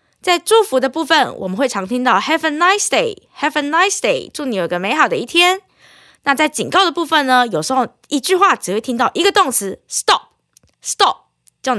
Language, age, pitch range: Chinese, 20-39, 245-360 Hz